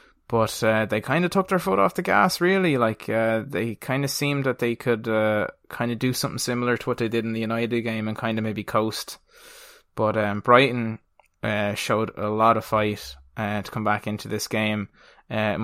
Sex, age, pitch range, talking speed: male, 20-39, 110-125 Hz, 220 wpm